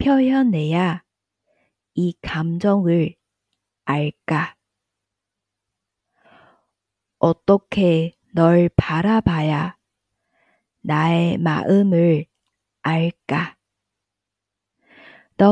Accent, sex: Korean, female